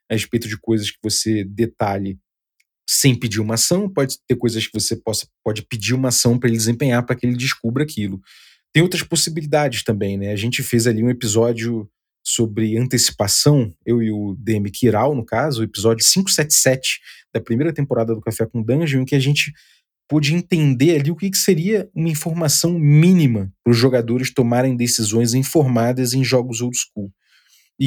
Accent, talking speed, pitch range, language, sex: Brazilian, 180 wpm, 115-145 Hz, Portuguese, male